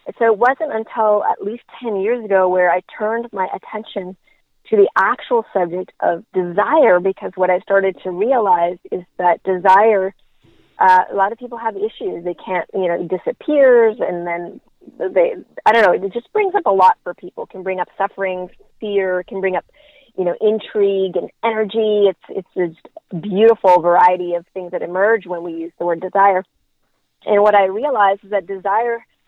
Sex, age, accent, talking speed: female, 30-49, American, 190 wpm